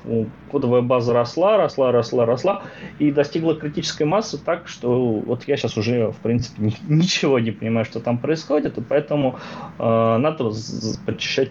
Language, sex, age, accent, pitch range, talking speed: Russian, male, 20-39, native, 115-155 Hz, 150 wpm